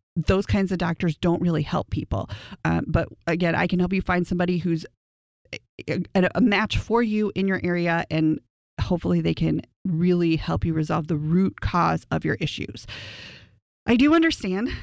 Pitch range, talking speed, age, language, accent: 160-210 Hz, 180 wpm, 30-49, English, American